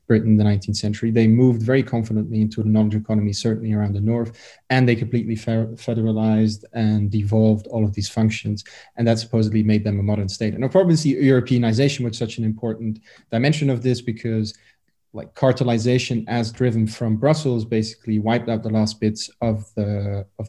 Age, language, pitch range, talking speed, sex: 20-39, English, 110-125 Hz, 180 wpm, male